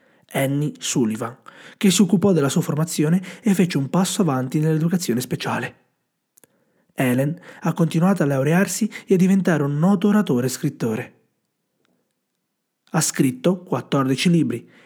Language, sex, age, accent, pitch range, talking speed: Italian, male, 30-49, native, 130-180 Hz, 130 wpm